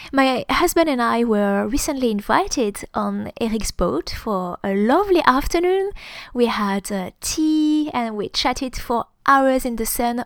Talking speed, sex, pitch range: 145 wpm, female, 215-275 Hz